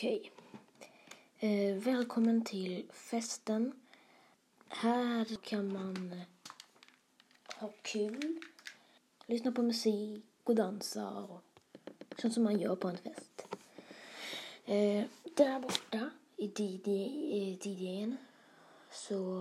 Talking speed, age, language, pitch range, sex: 95 wpm, 20-39, Swedish, 185-250 Hz, female